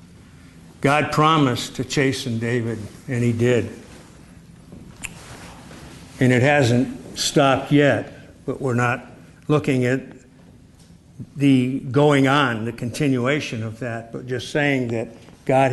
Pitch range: 120-145 Hz